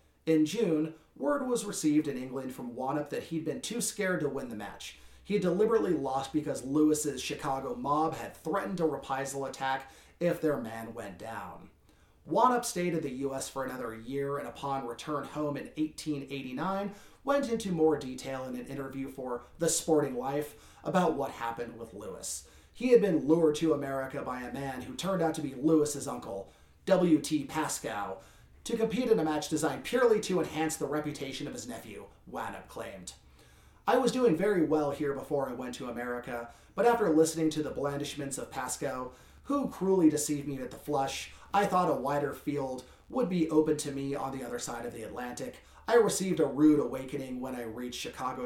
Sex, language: male, English